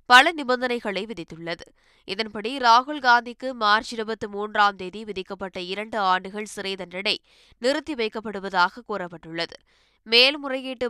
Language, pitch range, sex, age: Tamil, 190-235 Hz, female, 20-39